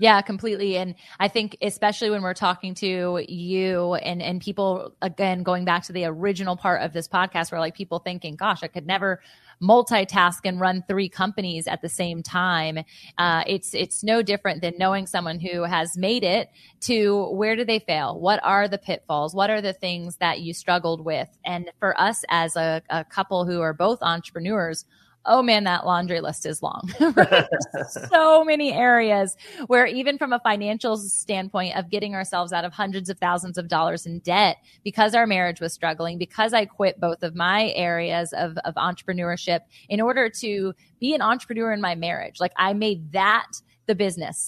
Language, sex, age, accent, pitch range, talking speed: English, female, 20-39, American, 175-205 Hz, 185 wpm